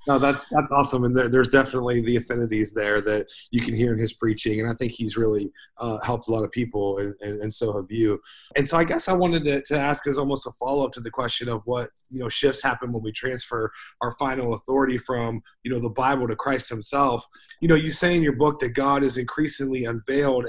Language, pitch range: English, 120-150 Hz